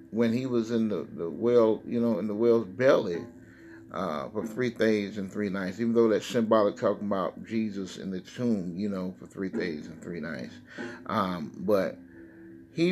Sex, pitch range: male, 100-125 Hz